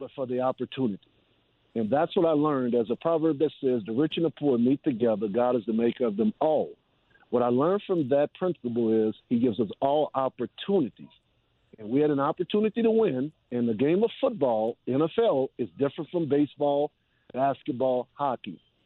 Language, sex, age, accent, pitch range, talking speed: English, male, 50-69, American, 125-170 Hz, 190 wpm